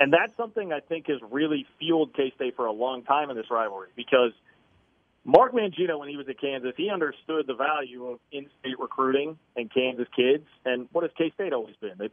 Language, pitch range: English, 120-145 Hz